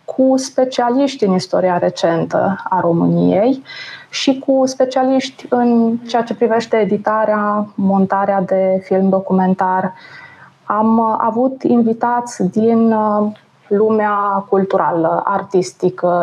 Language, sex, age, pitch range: Romanian, female, 20-39, 185-235 Hz